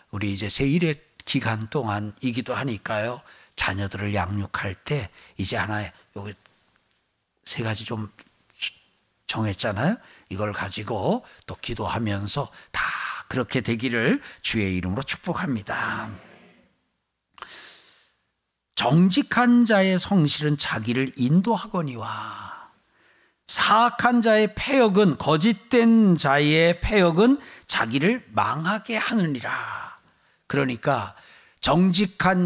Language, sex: Korean, male